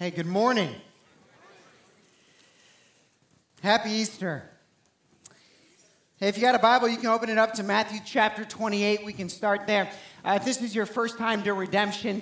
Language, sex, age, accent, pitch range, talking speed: English, male, 40-59, American, 195-235 Hz, 160 wpm